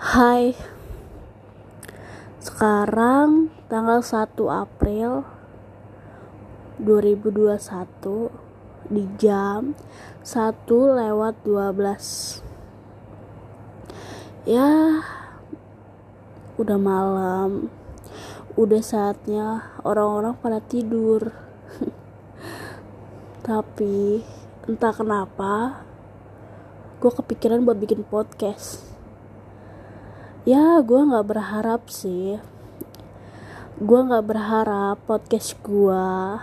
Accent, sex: native, female